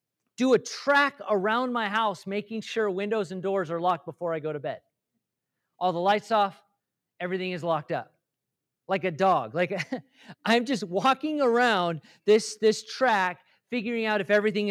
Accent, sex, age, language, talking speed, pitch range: American, male, 40-59, English, 165 wpm, 175-240 Hz